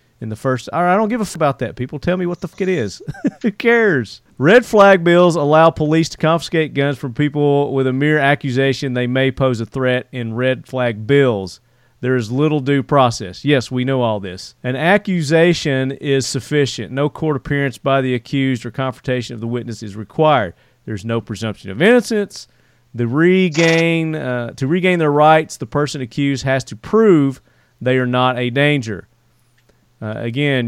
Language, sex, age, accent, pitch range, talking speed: English, male, 40-59, American, 120-150 Hz, 190 wpm